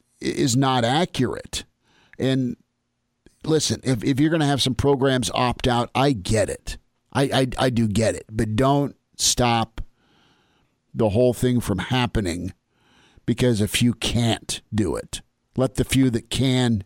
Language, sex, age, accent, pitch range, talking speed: English, male, 50-69, American, 110-130 Hz, 155 wpm